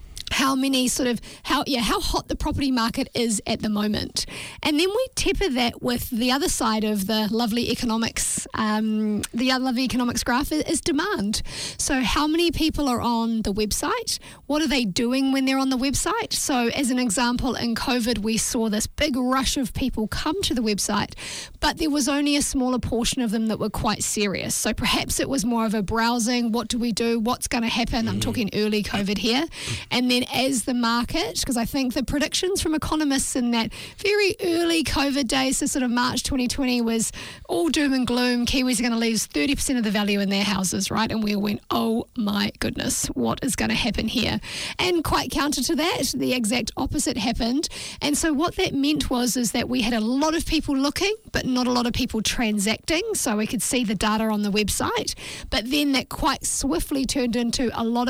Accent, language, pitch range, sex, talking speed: Australian, English, 225-280 Hz, female, 215 wpm